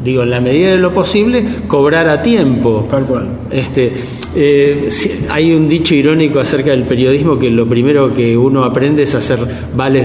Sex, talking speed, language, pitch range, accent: male, 185 wpm, Spanish, 125-165 Hz, Argentinian